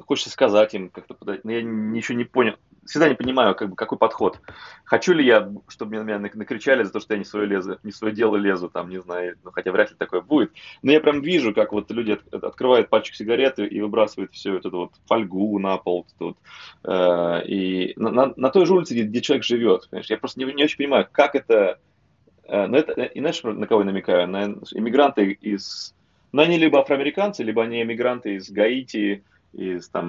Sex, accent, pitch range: male, native, 100-130 Hz